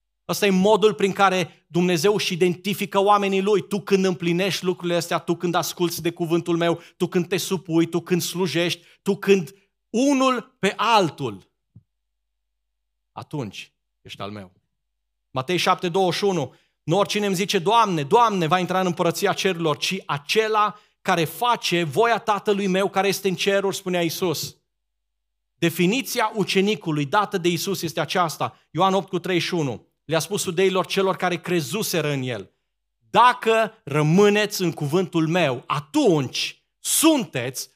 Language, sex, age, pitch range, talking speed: Romanian, male, 40-59, 125-195 Hz, 140 wpm